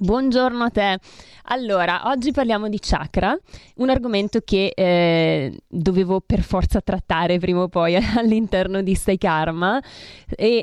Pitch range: 170-210 Hz